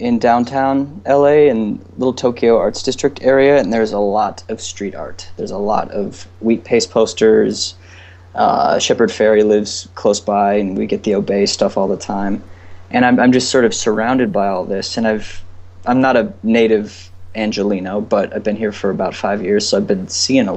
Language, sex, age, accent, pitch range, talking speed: English, male, 20-39, American, 95-120 Hz, 200 wpm